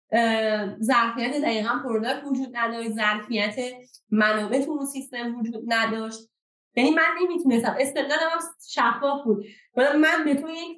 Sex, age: female, 20-39